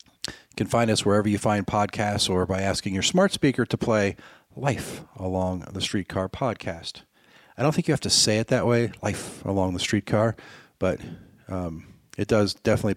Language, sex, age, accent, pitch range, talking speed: English, male, 40-59, American, 100-120 Hz, 185 wpm